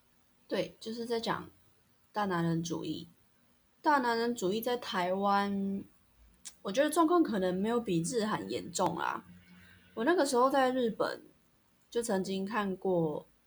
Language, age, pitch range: Chinese, 20-39, 170-215 Hz